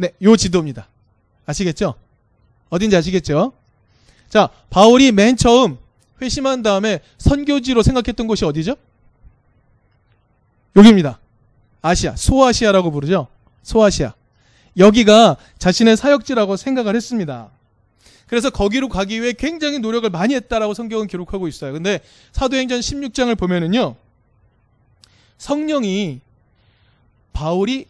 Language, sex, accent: Korean, male, native